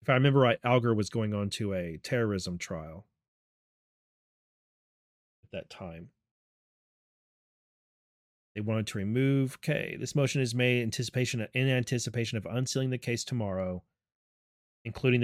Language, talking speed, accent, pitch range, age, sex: English, 125 wpm, American, 105-125 Hz, 30-49, male